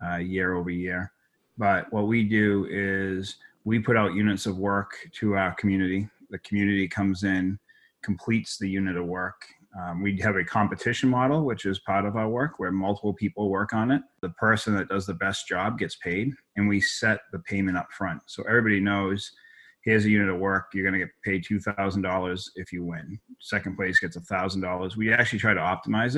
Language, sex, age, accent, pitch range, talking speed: English, male, 30-49, American, 95-110 Hz, 200 wpm